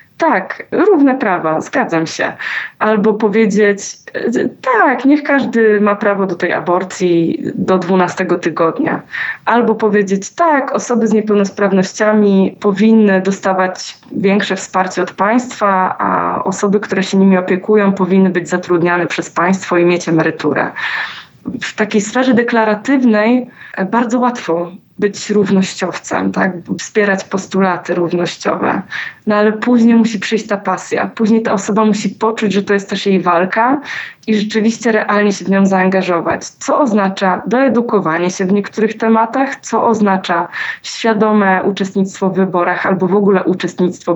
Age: 20-39